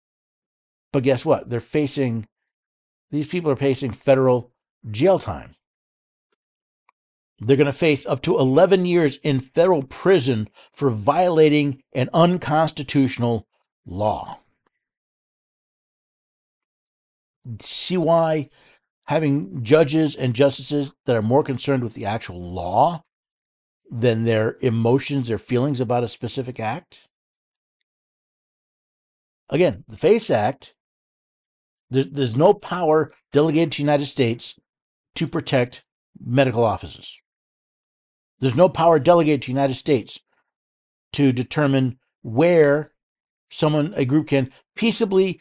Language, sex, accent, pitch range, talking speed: English, male, American, 125-160 Hz, 110 wpm